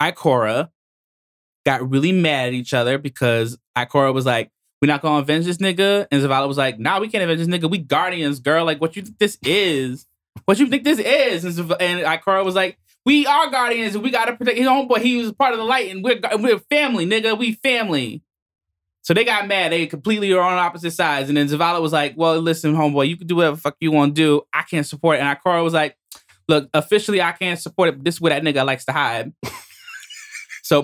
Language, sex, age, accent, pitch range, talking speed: English, male, 20-39, American, 150-190 Hz, 230 wpm